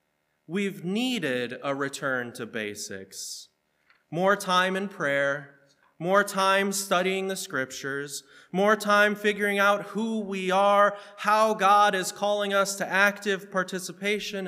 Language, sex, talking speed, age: English, male, 125 wpm, 30-49